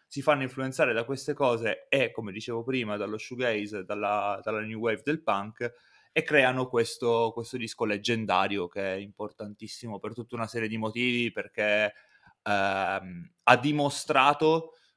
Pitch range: 105-130 Hz